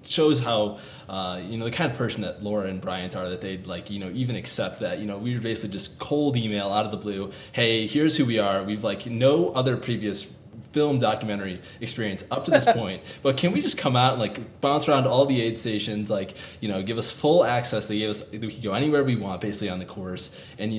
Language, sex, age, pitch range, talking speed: English, male, 20-39, 100-125 Hz, 250 wpm